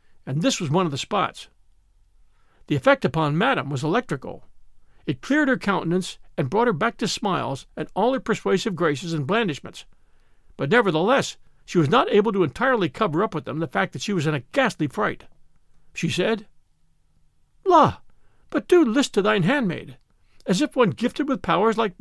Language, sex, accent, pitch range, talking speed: English, male, American, 150-225 Hz, 185 wpm